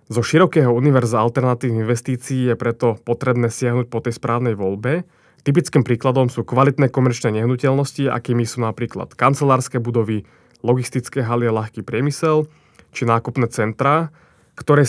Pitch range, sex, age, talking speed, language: 115-140 Hz, male, 20-39, 130 wpm, Slovak